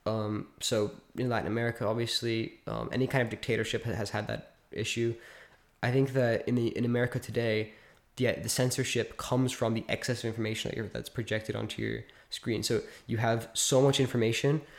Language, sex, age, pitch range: English, male, 10-29, 110-125 Hz